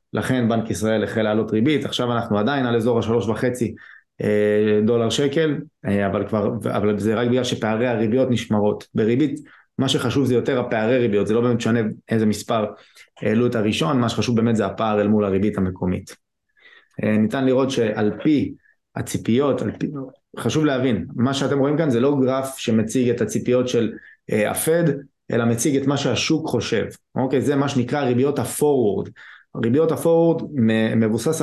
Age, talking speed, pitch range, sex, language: 20-39, 135 wpm, 110-130 Hz, male, Hebrew